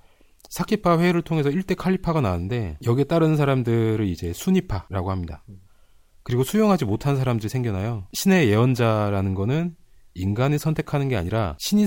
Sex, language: male, Korean